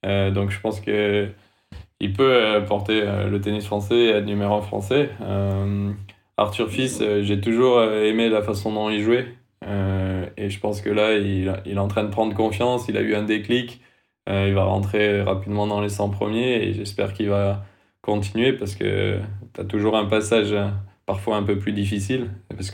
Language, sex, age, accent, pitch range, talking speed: French, male, 20-39, French, 100-110 Hz, 190 wpm